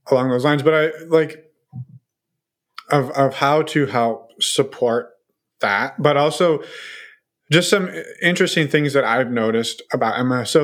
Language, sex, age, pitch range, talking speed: English, male, 20-39, 120-155 Hz, 140 wpm